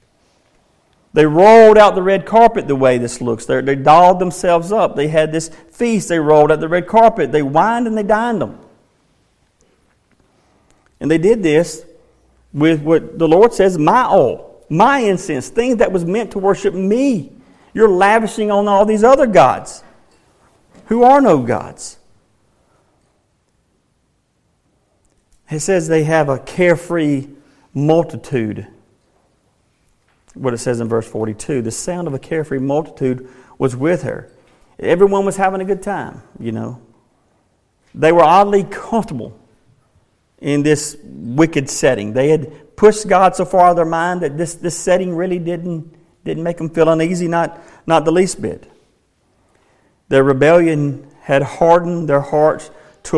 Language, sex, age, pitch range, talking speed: English, male, 50-69, 140-190 Hz, 150 wpm